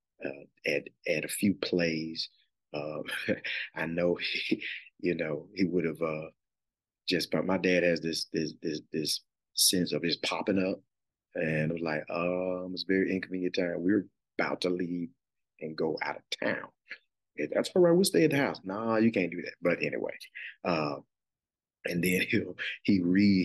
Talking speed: 185 wpm